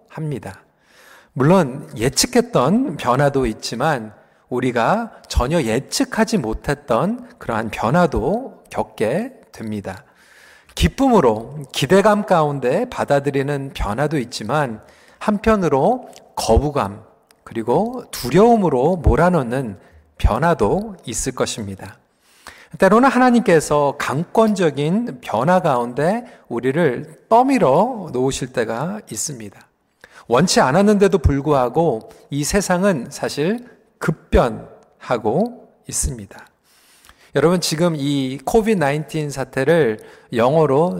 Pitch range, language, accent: 130-210 Hz, Korean, native